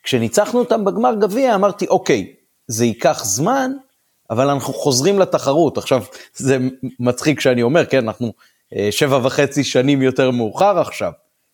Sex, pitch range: male, 120-170 Hz